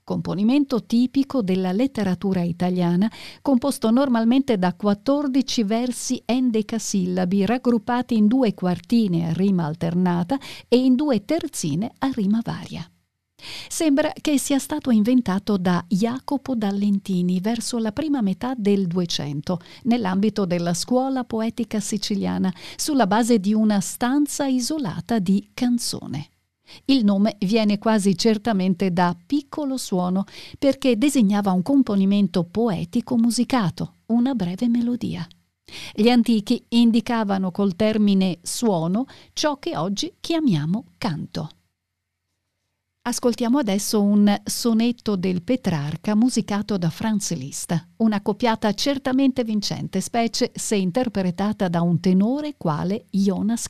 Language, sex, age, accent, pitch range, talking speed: Italian, female, 50-69, native, 185-245 Hz, 115 wpm